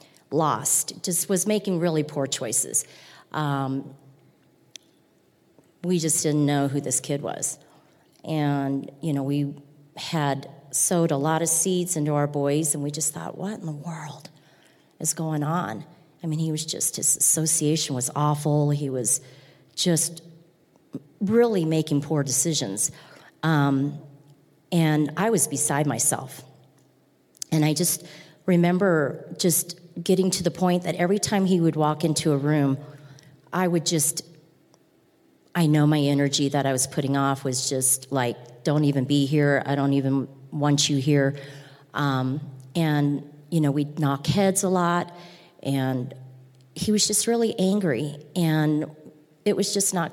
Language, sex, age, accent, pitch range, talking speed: English, female, 40-59, American, 140-175 Hz, 150 wpm